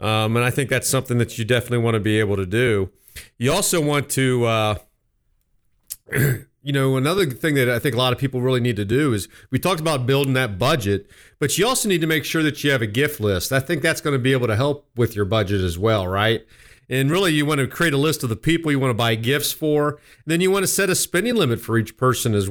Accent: American